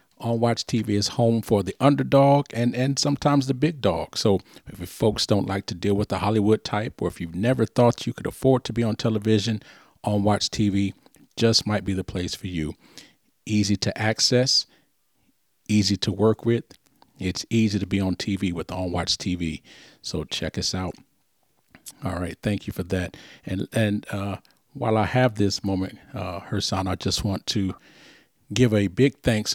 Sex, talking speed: male, 185 wpm